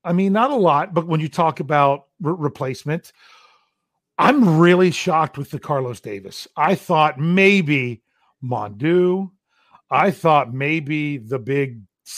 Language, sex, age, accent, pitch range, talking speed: English, male, 40-59, American, 140-180 Hz, 140 wpm